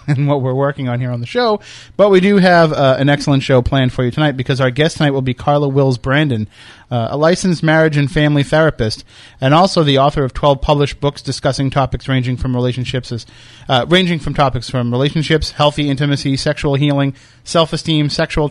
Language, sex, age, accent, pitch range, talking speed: English, male, 30-49, American, 125-155 Hz, 210 wpm